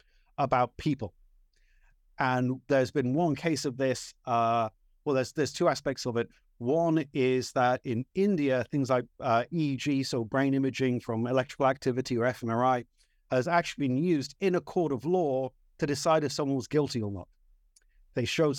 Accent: British